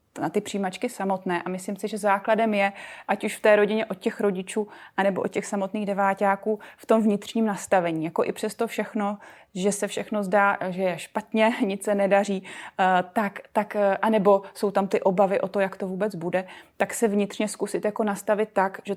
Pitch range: 185-210 Hz